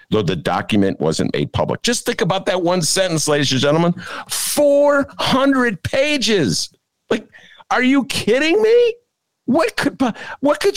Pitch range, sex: 140-235 Hz, male